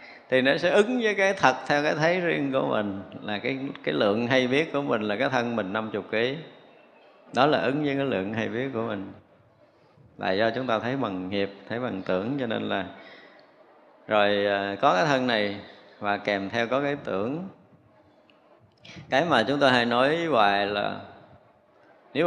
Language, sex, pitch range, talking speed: Vietnamese, male, 105-140 Hz, 190 wpm